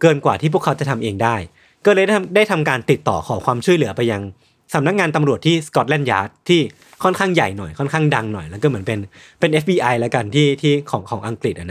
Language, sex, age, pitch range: Thai, male, 20-39, 120-165 Hz